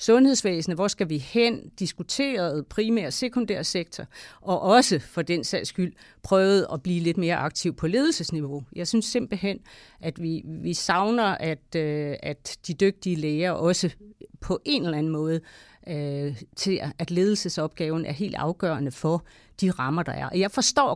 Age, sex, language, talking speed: 40-59, female, English, 160 wpm